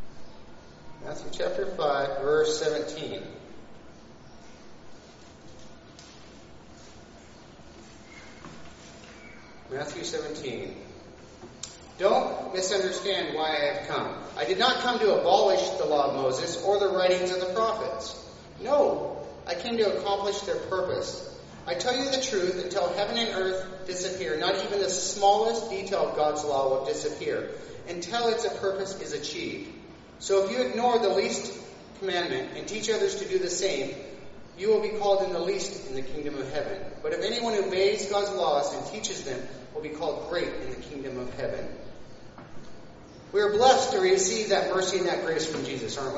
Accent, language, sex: American, English, male